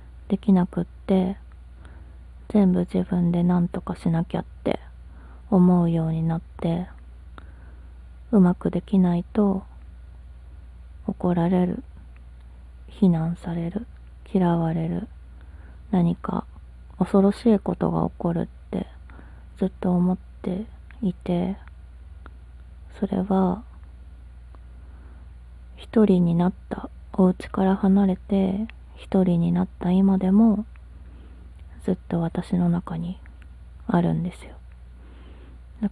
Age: 20-39